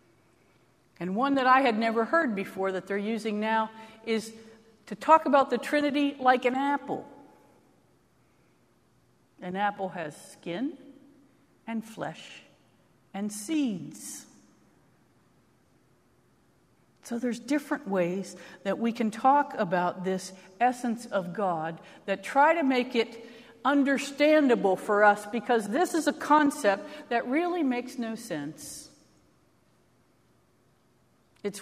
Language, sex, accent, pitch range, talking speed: English, female, American, 185-245 Hz, 115 wpm